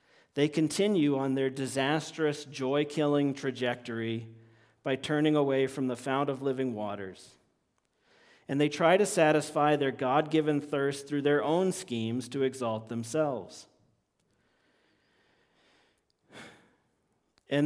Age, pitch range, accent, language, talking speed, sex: 40-59, 130-150 Hz, American, English, 110 wpm, male